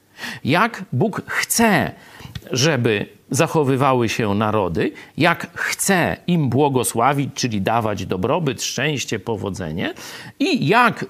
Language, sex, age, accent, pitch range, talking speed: Polish, male, 50-69, native, 115-180 Hz, 95 wpm